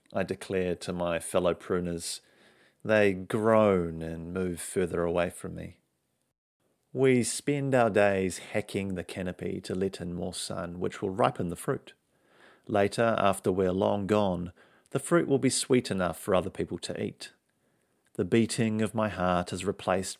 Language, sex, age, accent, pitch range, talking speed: English, male, 40-59, Australian, 90-110 Hz, 160 wpm